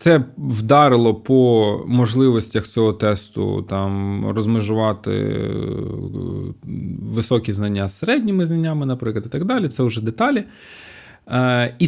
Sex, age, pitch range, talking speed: male, 20-39, 110-135 Hz, 105 wpm